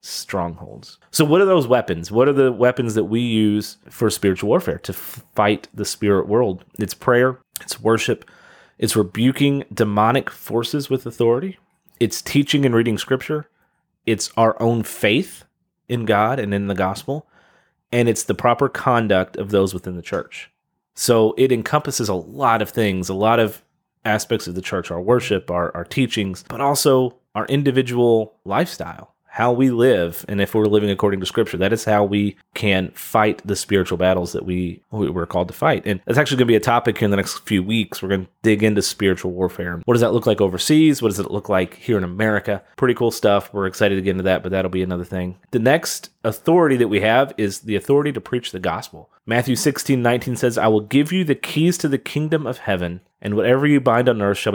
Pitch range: 95-125 Hz